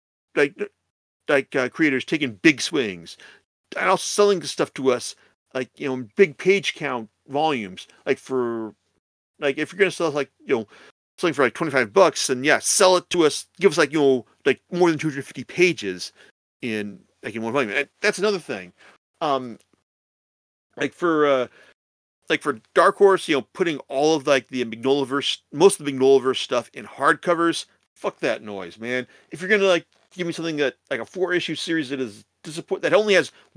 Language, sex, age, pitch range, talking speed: English, male, 40-59, 115-170 Hz, 195 wpm